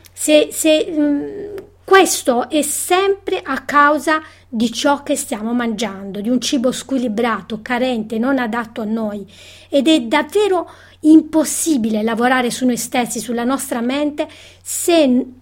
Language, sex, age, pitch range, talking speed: Italian, female, 30-49, 240-320 Hz, 130 wpm